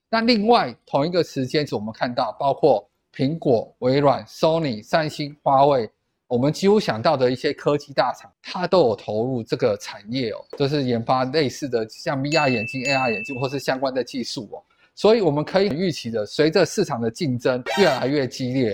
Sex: male